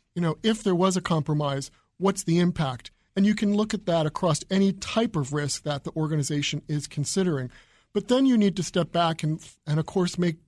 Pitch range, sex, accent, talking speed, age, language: 145-180 Hz, male, American, 220 wpm, 40-59, English